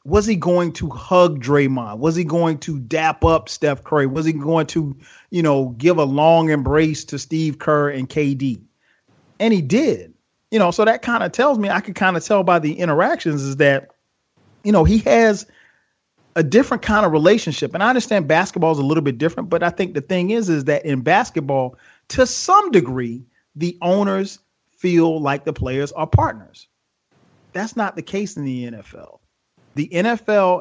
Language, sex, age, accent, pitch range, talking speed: English, male, 40-59, American, 145-190 Hz, 190 wpm